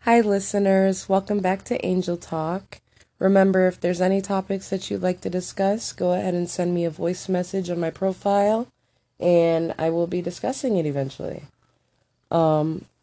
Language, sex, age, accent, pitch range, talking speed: English, female, 20-39, American, 155-195 Hz, 165 wpm